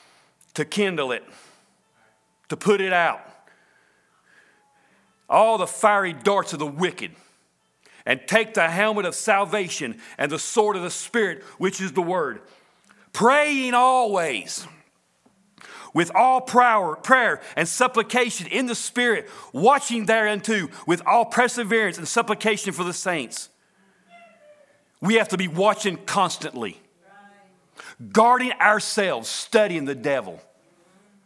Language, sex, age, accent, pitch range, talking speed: English, male, 40-59, American, 180-230 Hz, 115 wpm